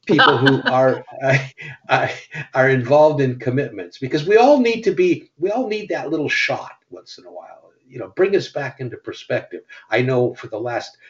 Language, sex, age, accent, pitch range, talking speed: English, male, 60-79, American, 125-165 Hz, 195 wpm